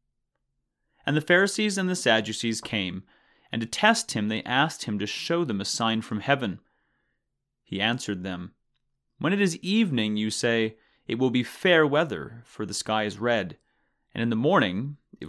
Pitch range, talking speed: 110-145 Hz, 175 wpm